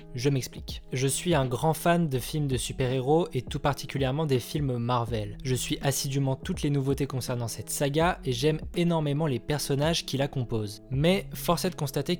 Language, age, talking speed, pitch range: French, 20-39, 190 wpm, 130-160 Hz